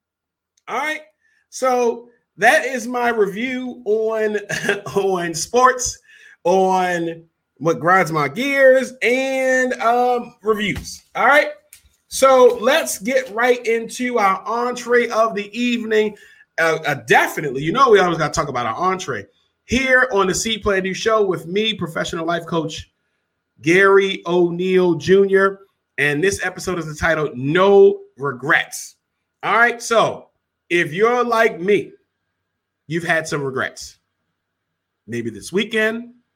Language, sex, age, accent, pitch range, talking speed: English, male, 30-49, American, 140-240 Hz, 130 wpm